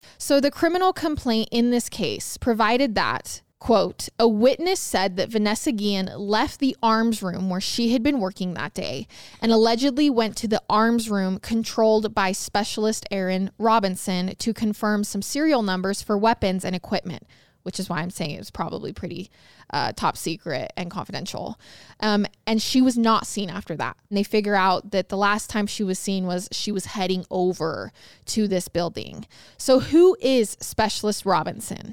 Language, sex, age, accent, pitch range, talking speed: English, female, 20-39, American, 195-235 Hz, 175 wpm